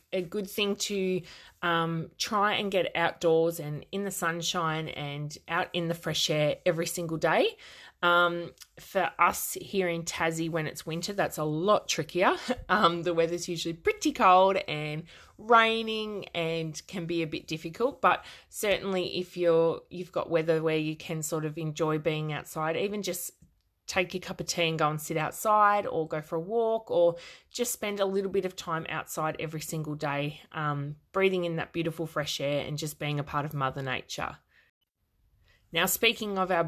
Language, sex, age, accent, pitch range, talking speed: English, female, 20-39, Australian, 160-190 Hz, 185 wpm